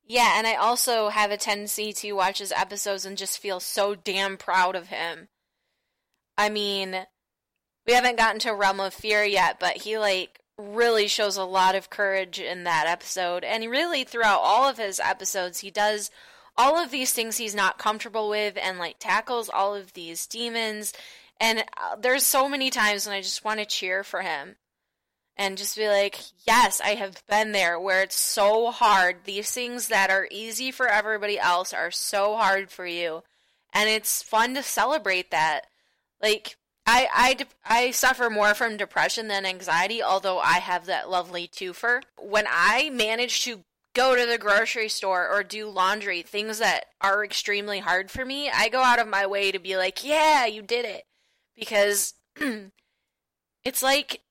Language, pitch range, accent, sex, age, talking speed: English, 195-230 Hz, American, female, 10-29, 175 wpm